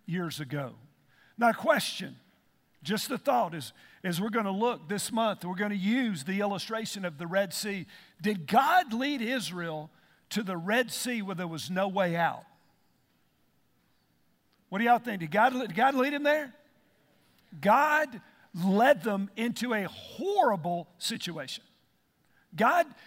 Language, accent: English, American